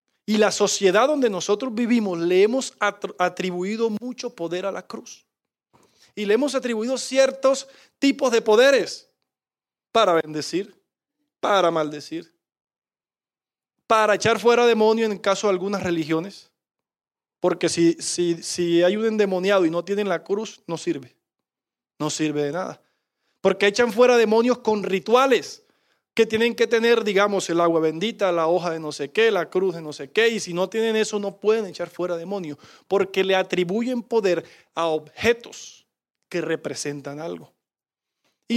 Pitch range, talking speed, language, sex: 180-245 Hz, 155 wpm, English, male